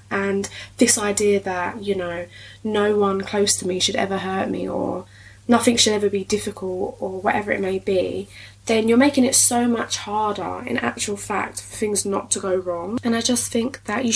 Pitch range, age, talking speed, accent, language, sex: 180-230 Hz, 10-29, 205 wpm, British, English, female